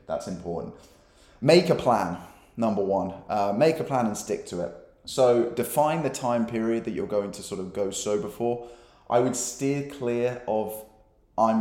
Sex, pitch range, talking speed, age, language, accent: male, 100-120 Hz, 180 wpm, 20-39, English, British